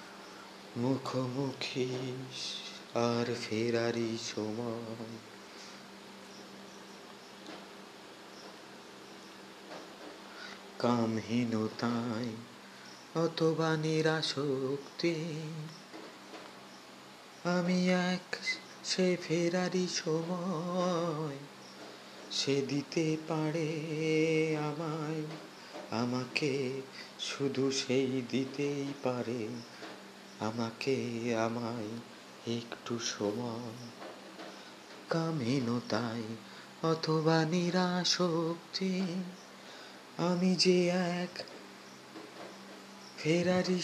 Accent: native